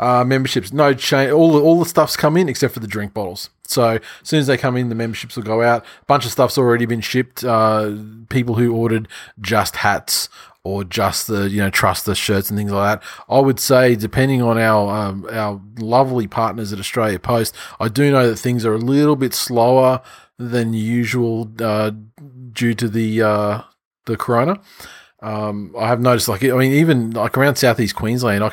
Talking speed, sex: 205 wpm, male